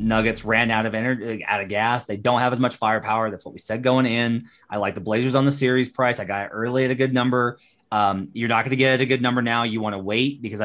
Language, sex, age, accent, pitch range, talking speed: English, male, 30-49, American, 105-130 Hz, 295 wpm